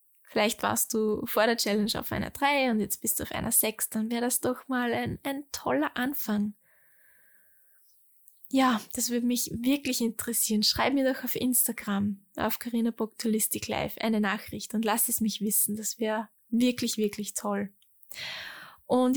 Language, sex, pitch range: German, female, 210-245 Hz